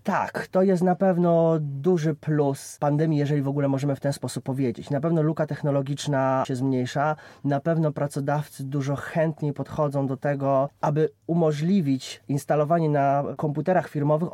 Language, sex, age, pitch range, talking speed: Polish, male, 20-39, 135-155 Hz, 150 wpm